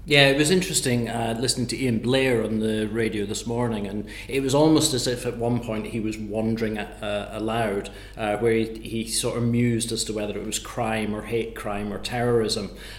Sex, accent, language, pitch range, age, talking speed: male, British, English, 110-125 Hz, 30-49, 210 wpm